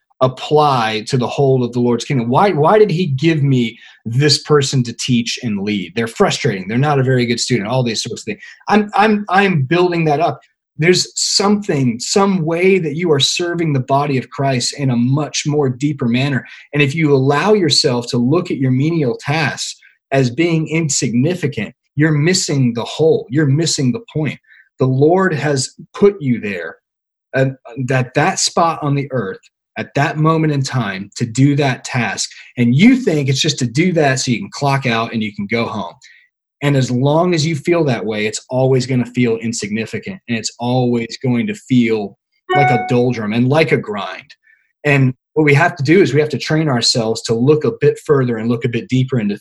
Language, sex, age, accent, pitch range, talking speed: English, male, 30-49, American, 120-160 Hz, 205 wpm